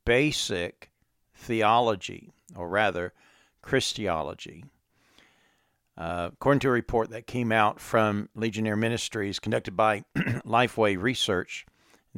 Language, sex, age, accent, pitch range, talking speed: English, male, 50-69, American, 100-125 Hz, 105 wpm